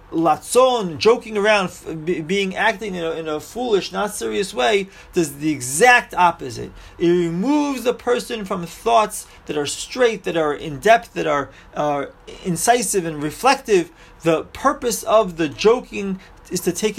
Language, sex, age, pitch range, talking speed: English, male, 30-49, 145-195 Hz, 155 wpm